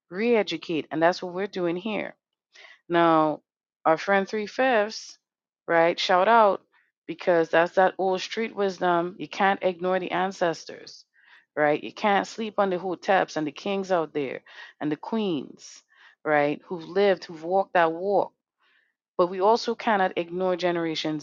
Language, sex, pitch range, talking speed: English, female, 165-200 Hz, 150 wpm